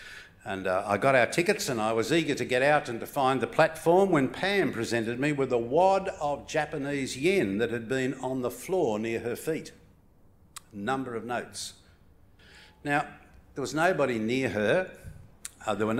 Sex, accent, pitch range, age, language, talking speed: male, Australian, 100-145 Hz, 60-79, English, 185 wpm